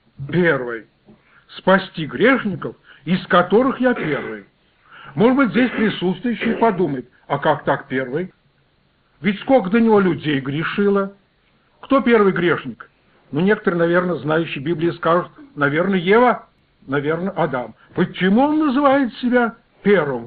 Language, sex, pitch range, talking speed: Russian, male, 155-235 Hz, 120 wpm